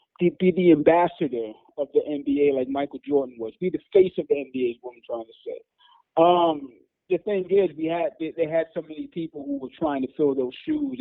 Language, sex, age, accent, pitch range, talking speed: English, male, 30-49, American, 125-175 Hz, 220 wpm